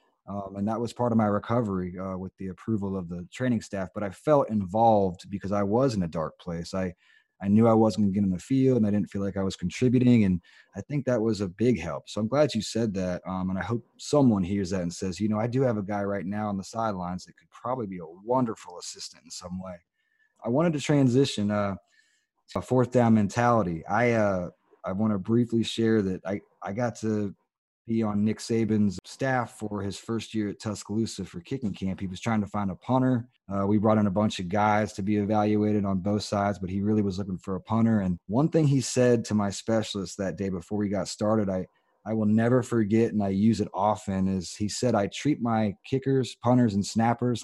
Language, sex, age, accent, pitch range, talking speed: English, male, 30-49, American, 95-115 Hz, 240 wpm